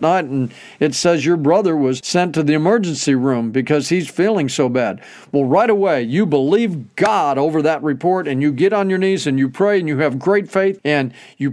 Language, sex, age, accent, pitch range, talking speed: English, male, 50-69, American, 145-195 Hz, 220 wpm